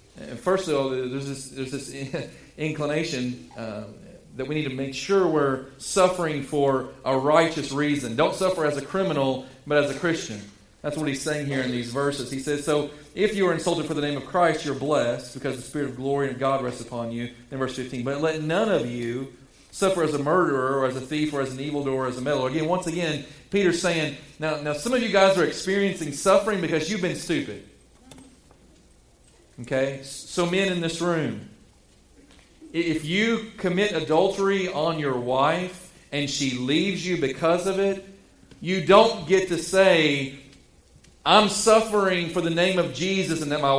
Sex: male